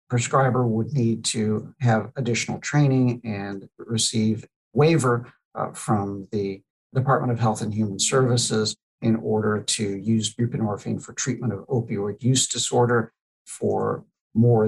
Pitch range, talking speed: 110-130 Hz, 125 wpm